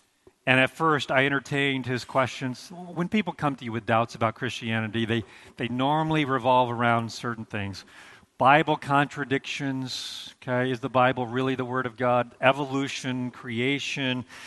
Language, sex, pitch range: English, male, 115-140 Hz